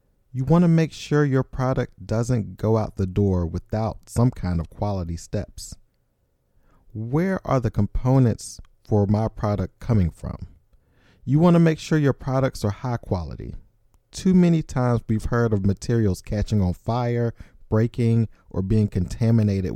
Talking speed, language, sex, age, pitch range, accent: 150 wpm, English, male, 40-59, 95-130 Hz, American